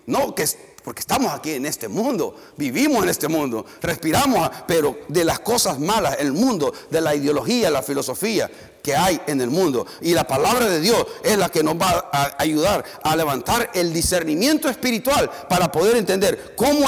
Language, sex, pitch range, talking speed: Spanish, male, 180-270 Hz, 185 wpm